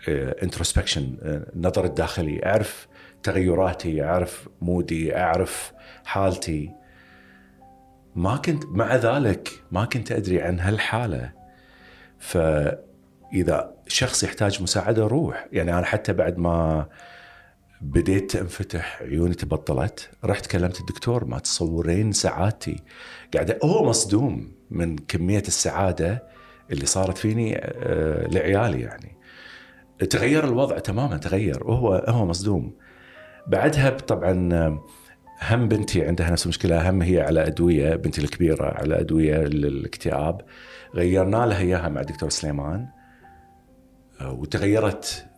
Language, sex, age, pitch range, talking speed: Arabic, male, 50-69, 85-110 Hz, 105 wpm